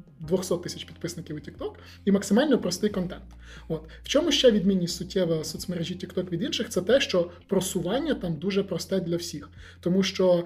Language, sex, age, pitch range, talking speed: Ukrainian, male, 20-39, 170-210 Hz, 170 wpm